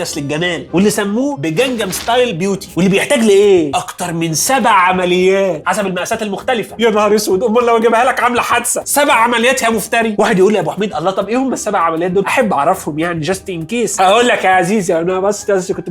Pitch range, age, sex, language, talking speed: 175-235 Hz, 30-49, male, Arabic, 195 wpm